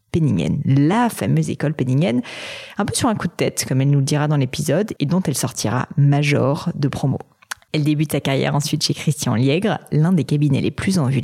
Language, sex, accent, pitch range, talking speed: French, female, French, 135-170 Hz, 220 wpm